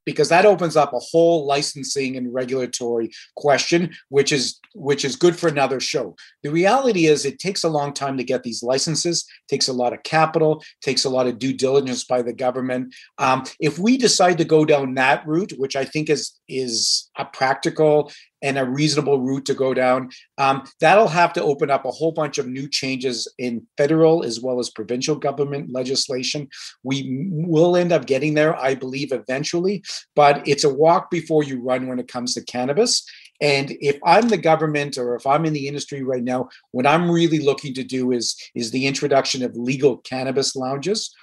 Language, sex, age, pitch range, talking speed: English, male, 40-59, 125-155 Hz, 195 wpm